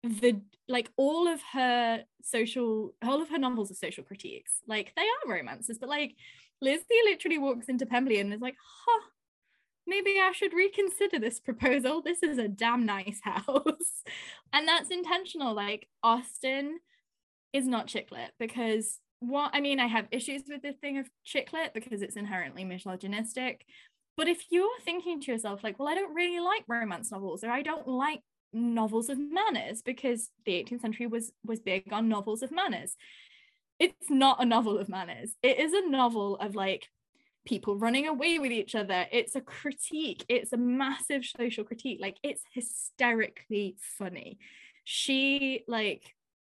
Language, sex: English, female